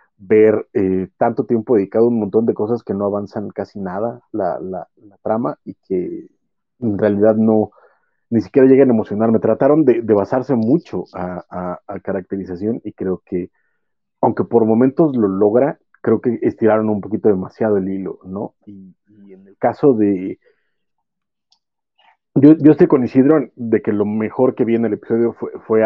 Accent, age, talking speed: Mexican, 40-59, 180 wpm